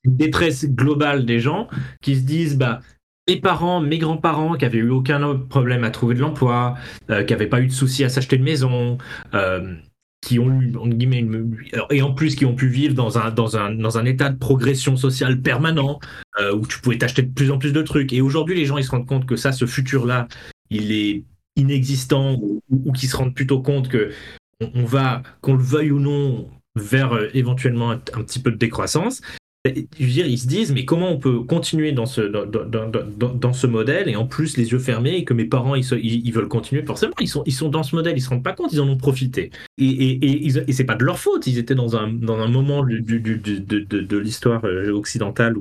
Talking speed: 250 wpm